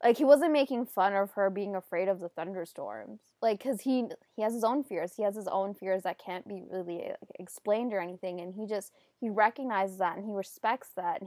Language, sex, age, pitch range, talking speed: English, female, 20-39, 185-225 Hz, 230 wpm